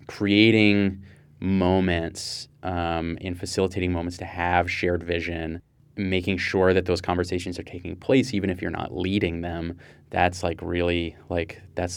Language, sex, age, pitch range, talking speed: English, male, 20-39, 90-115 Hz, 145 wpm